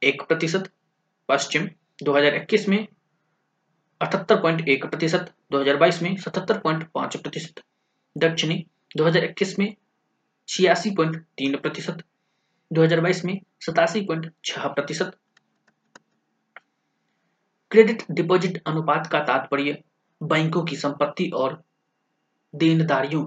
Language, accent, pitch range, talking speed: Hindi, native, 140-180 Hz, 60 wpm